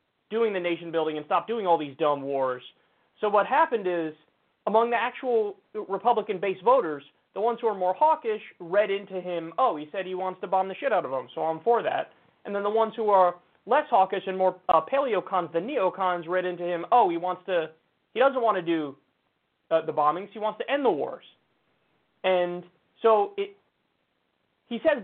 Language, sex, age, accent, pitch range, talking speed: English, male, 30-49, American, 175-230 Hz, 195 wpm